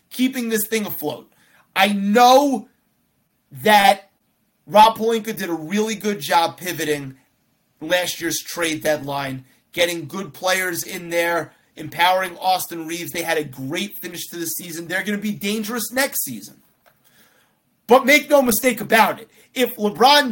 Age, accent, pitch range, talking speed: 30-49, American, 170-225 Hz, 150 wpm